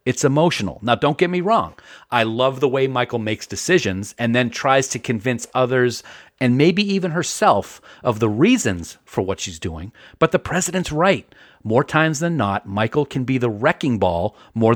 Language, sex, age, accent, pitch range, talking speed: English, male, 40-59, American, 105-140 Hz, 185 wpm